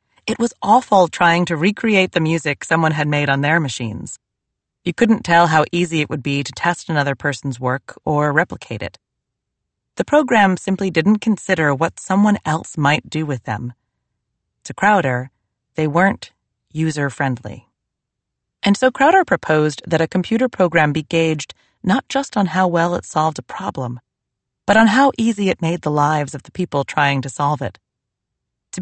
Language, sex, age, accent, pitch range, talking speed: English, female, 30-49, American, 140-190 Hz, 175 wpm